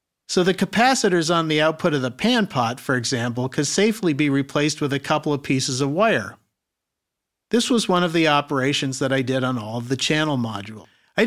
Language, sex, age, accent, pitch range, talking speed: English, male, 50-69, American, 130-170 Hz, 210 wpm